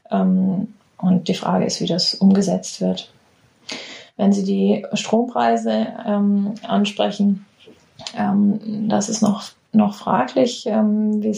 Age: 30-49